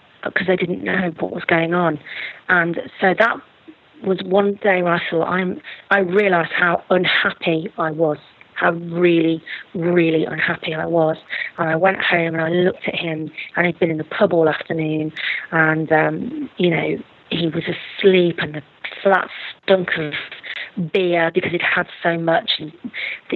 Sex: female